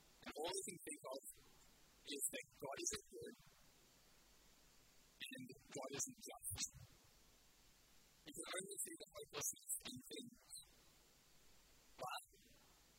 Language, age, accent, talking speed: English, 50-69, American, 115 wpm